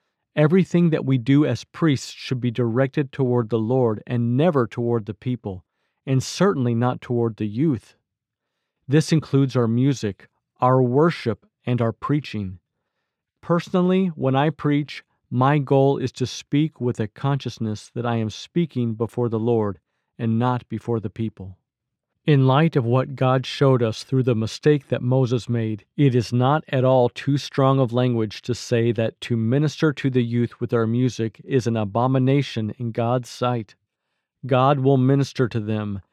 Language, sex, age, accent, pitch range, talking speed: English, male, 50-69, American, 120-140 Hz, 165 wpm